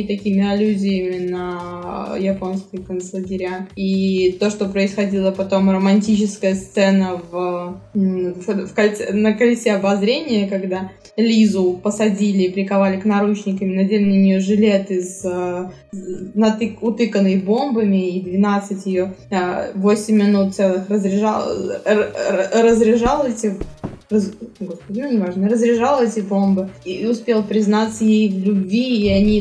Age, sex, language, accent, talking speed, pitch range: 20-39, female, Russian, native, 115 wpm, 195-215 Hz